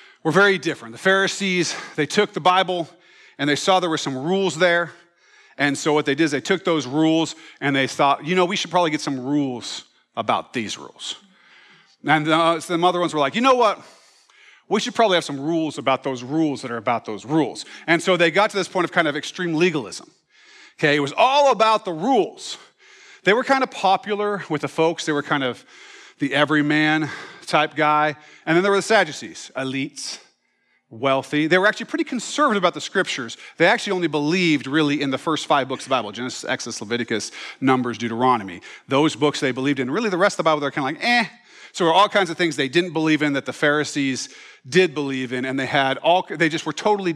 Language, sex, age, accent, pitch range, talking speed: English, male, 40-59, American, 140-185 Hz, 220 wpm